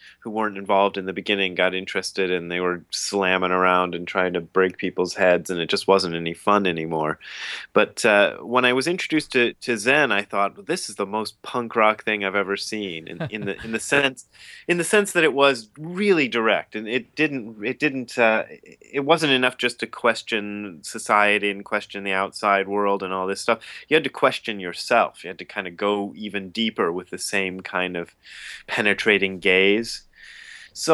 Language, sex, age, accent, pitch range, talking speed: English, male, 30-49, American, 95-125 Hz, 205 wpm